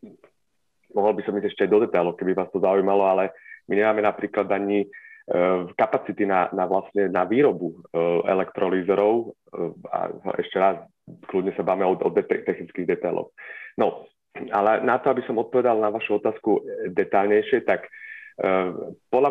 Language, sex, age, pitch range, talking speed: Slovak, male, 30-49, 95-125 Hz, 160 wpm